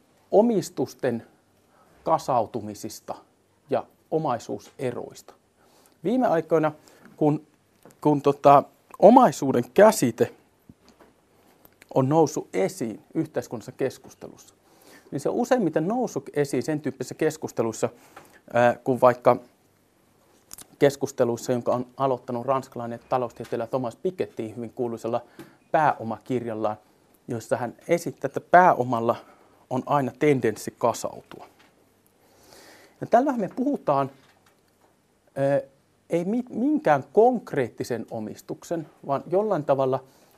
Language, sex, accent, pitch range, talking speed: Finnish, male, native, 120-160 Hz, 85 wpm